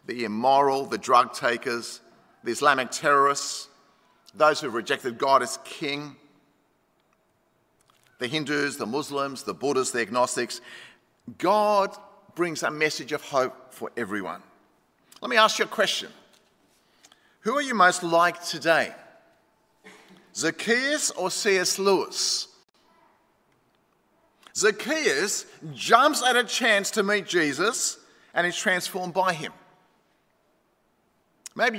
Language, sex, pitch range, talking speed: English, male, 160-215 Hz, 115 wpm